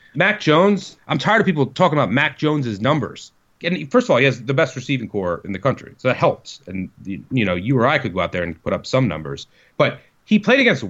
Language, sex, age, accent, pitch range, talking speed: English, male, 30-49, American, 125-180 Hz, 255 wpm